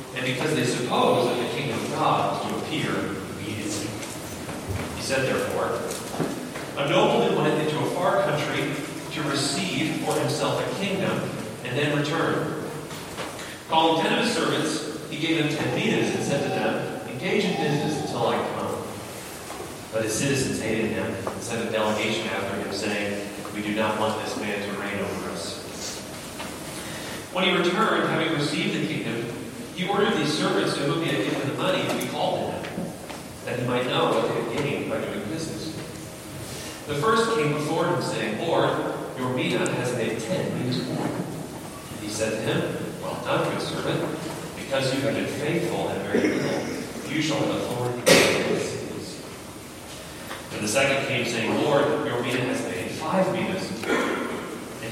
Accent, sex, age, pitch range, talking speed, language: American, male, 40-59, 110-155 Hz, 175 wpm, English